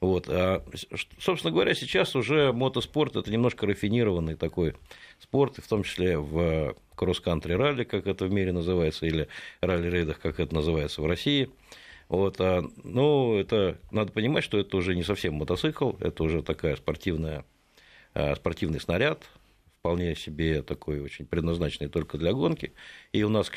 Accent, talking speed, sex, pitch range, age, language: native, 155 wpm, male, 80-100 Hz, 50-69, Russian